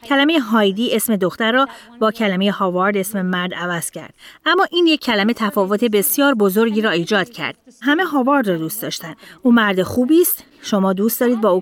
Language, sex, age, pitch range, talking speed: Persian, female, 30-49, 185-255 Hz, 185 wpm